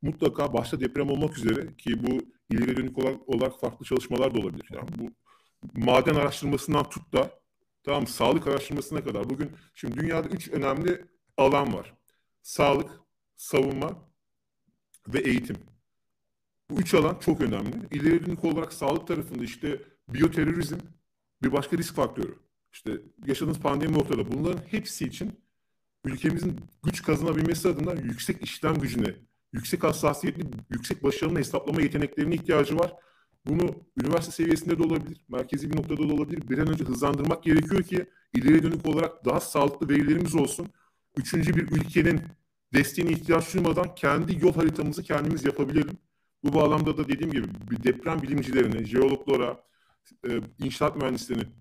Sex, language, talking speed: male, Turkish, 135 wpm